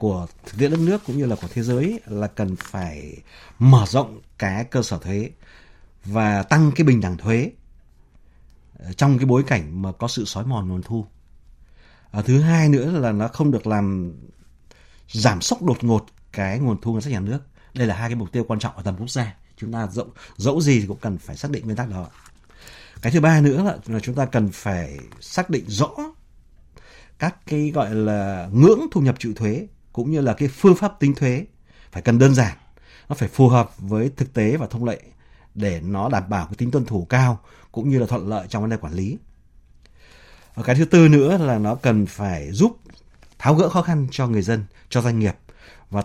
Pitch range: 100-135 Hz